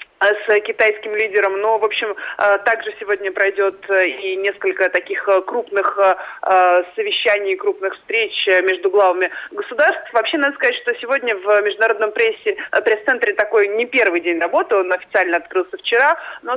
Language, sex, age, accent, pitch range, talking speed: Russian, male, 30-49, native, 195-295 Hz, 140 wpm